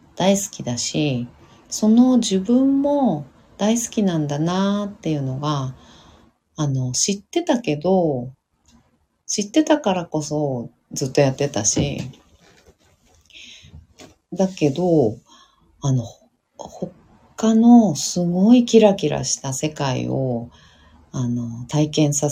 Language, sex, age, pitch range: Japanese, female, 40-59, 135-210 Hz